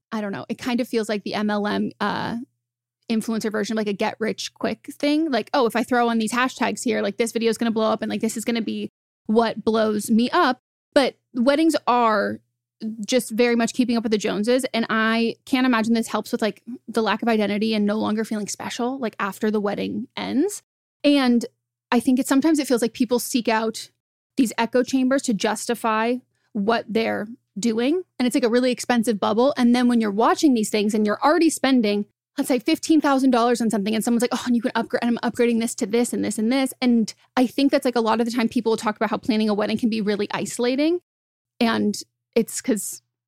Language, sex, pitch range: English, female, 215-245 Hz